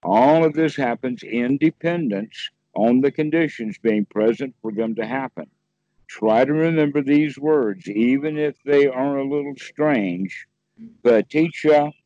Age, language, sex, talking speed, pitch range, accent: 60-79, English, male, 135 wpm, 115-155 Hz, American